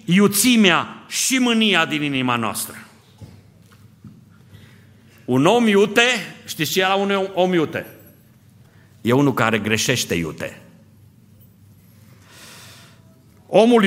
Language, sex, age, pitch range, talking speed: Romanian, male, 50-69, 110-135 Hz, 100 wpm